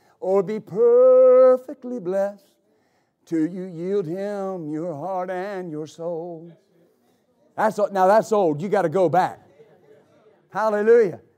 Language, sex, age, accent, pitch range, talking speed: English, male, 50-69, American, 190-255 Hz, 120 wpm